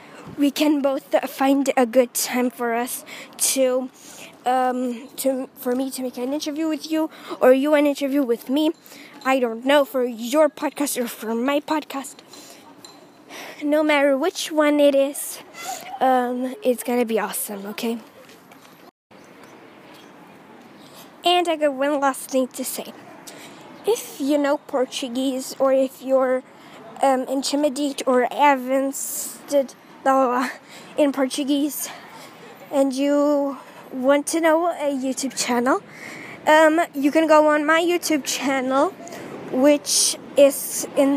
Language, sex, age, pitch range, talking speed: English, female, 20-39, 265-310 Hz, 130 wpm